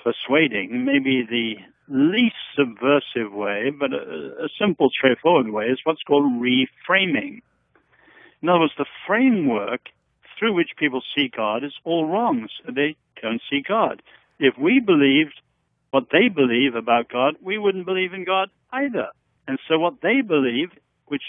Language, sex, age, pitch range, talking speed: English, male, 70-89, 125-200 Hz, 150 wpm